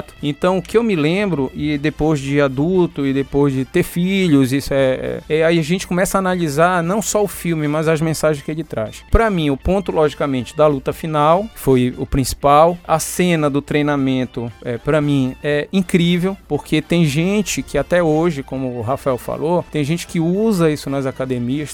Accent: Brazilian